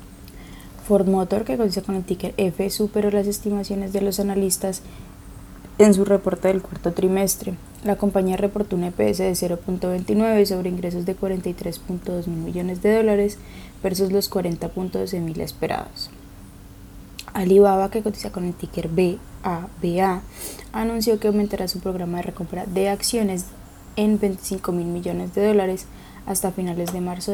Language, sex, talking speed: Spanish, female, 145 wpm